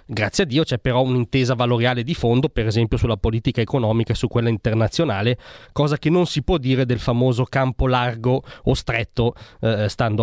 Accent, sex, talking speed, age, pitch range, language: native, male, 190 wpm, 20-39, 120-150 Hz, Italian